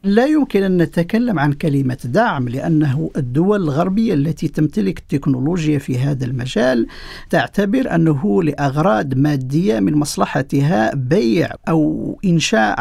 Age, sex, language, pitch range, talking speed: 50-69, male, Arabic, 145-180 Hz, 115 wpm